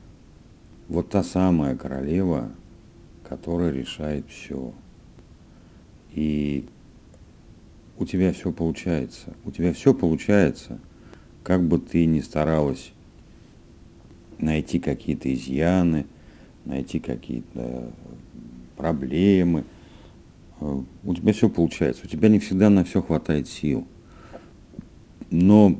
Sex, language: male, Russian